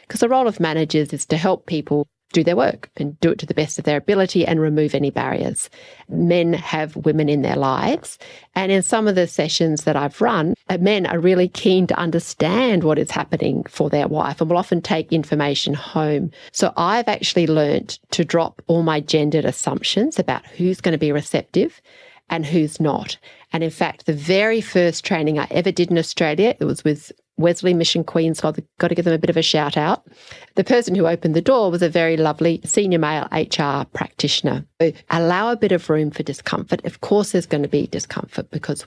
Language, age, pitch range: English, 40-59, 155-185 Hz